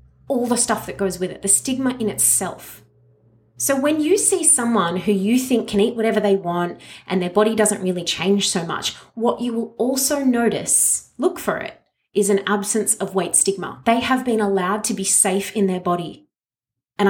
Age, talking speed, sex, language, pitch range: 30-49, 200 wpm, female, English, 195-235 Hz